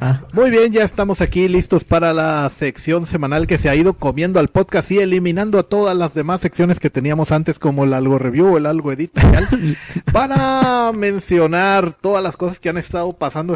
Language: Spanish